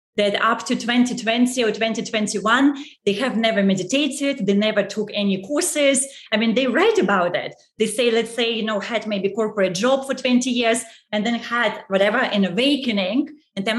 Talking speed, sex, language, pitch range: 185 wpm, female, English, 200-240 Hz